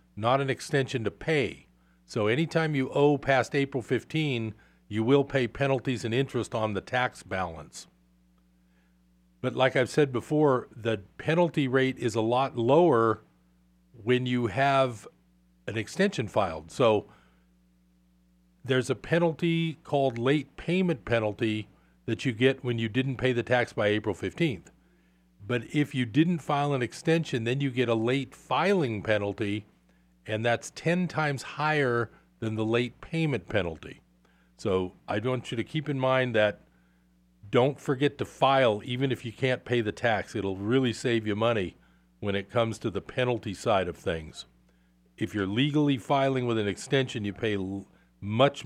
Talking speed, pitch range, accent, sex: 160 wpm, 90-135 Hz, American, male